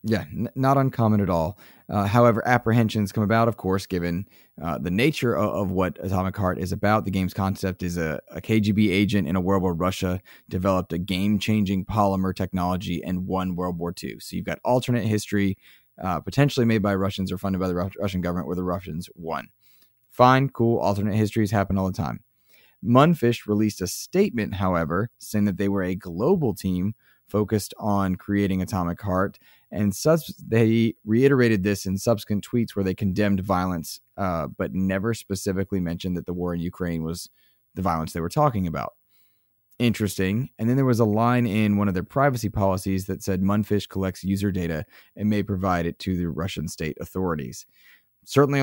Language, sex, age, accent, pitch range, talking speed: English, male, 20-39, American, 95-110 Hz, 185 wpm